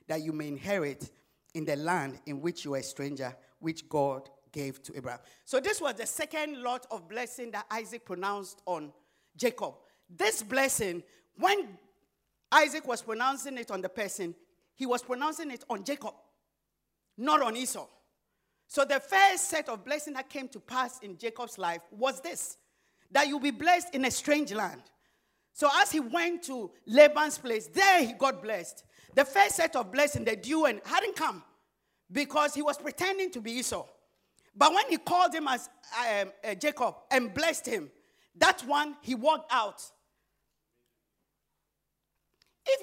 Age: 50-69